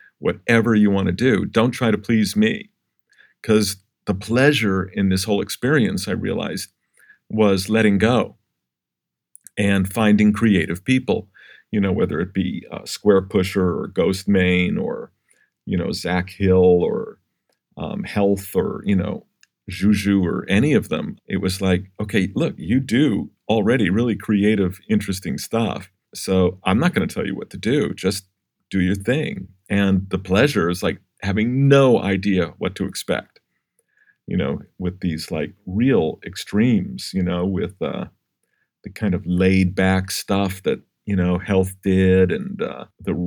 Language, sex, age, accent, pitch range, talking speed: English, male, 50-69, American, 95-105 Hz, 160 wpm